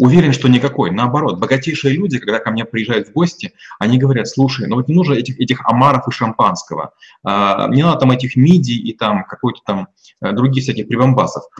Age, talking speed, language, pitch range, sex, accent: 30-49, 185 wpm, Russian, 125-155 Hz, male, native